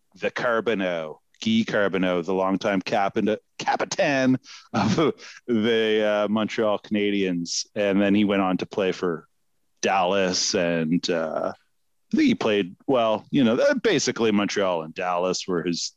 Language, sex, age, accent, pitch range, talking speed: English, male, 40-59, American, 100-125 Hz, 130 wpm